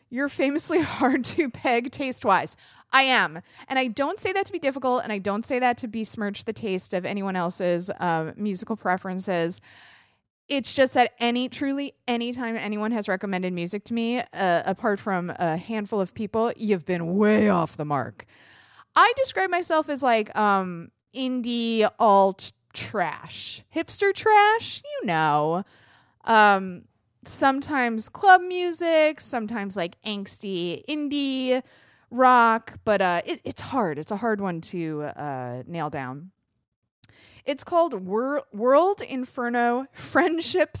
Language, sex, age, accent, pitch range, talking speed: English, female, 20-39, American, 190-280 Hz, 145 wpm